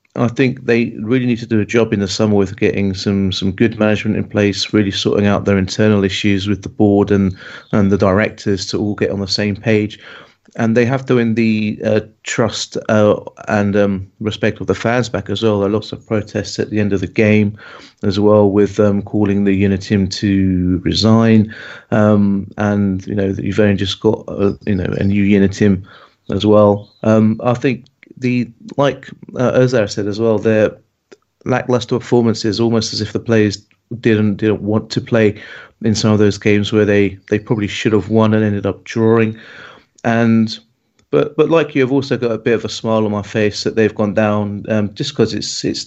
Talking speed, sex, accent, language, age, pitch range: 210 wpm, male, British, English, 30-49, 100-115 Hz